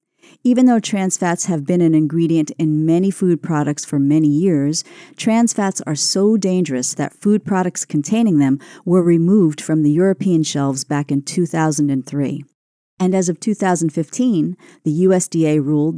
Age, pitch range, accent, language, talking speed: 50-69, 150-185 Hz, American, English, 155 wpm